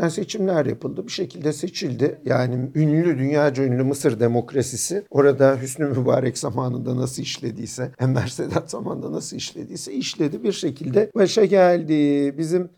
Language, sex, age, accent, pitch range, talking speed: Turkish, male, 50-69, native, 135-180 Hz, 135 wpm